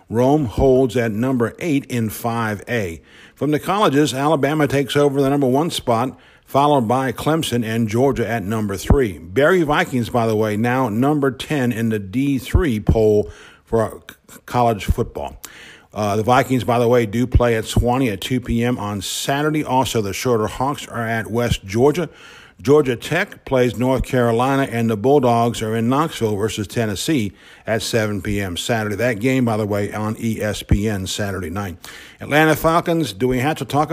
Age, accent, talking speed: 50-69, American, 170 wpm